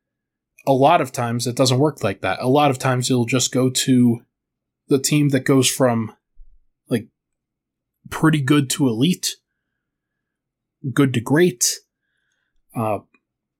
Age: 20-39